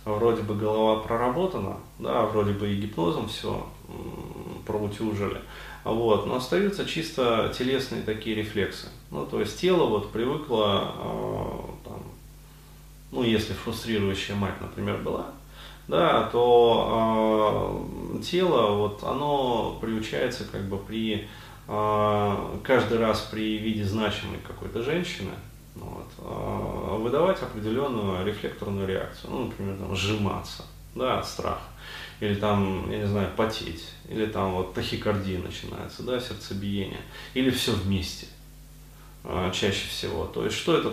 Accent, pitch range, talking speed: native, 100-115 Hz, 125 wpm